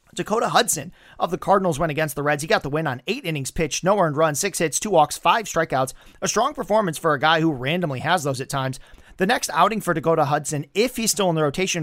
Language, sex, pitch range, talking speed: English, male, 145-185 Hz, 255 wpm